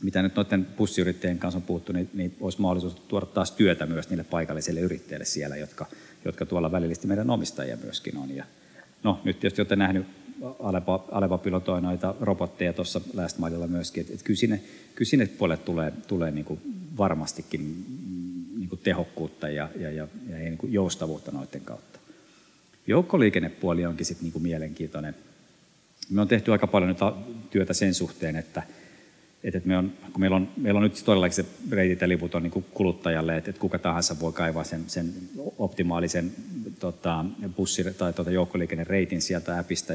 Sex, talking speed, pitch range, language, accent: male, 160 wpm, 85-95 Hz, Finnish, native